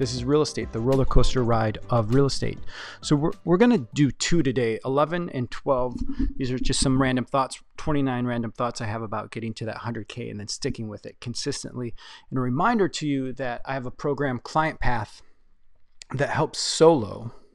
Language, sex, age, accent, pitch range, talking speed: English, male, 30-49, American, 115-140 Hz, 210 wpm